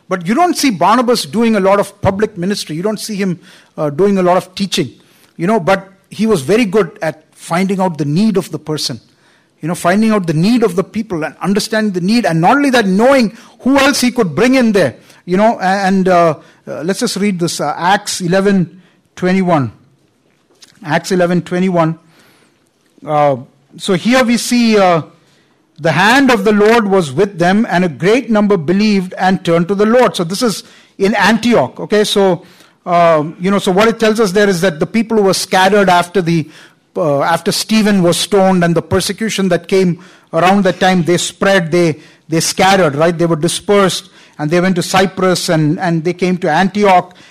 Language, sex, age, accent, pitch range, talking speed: English, male, 50-69, Indian, 170-210 Hz, 200 wpm